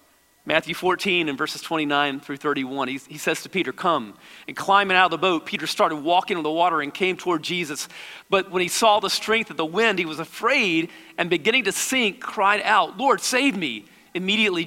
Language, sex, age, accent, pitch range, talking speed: English, male, 40-59, American, 175-225 Hz, 210 wpm